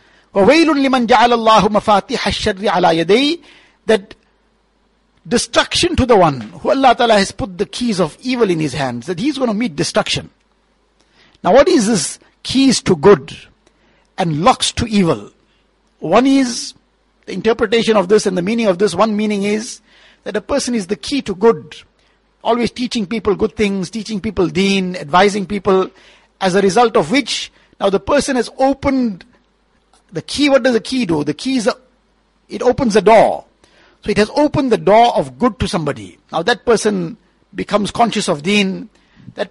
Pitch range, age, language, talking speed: 195-245 Hz, 60-79, English, 165 wpm